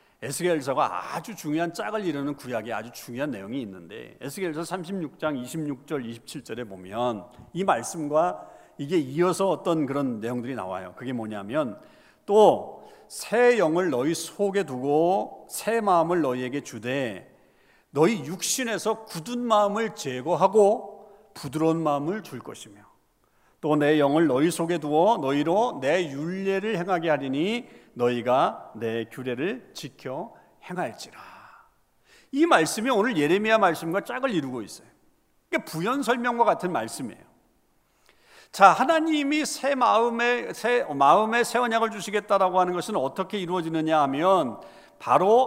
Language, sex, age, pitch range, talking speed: English, male, 40-59, 145-215 Hz, 110 wpm